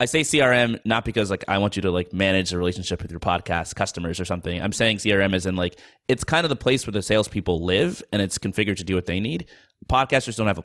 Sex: male